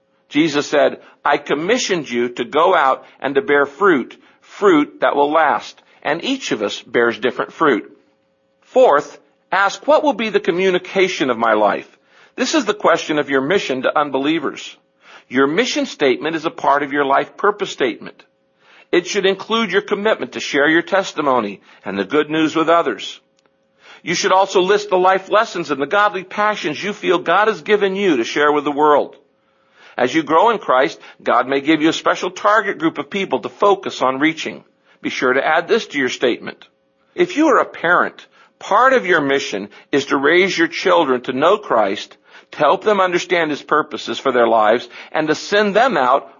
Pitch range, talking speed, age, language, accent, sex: 140-200 Hz, 190 wpm, 50-69, English, American, male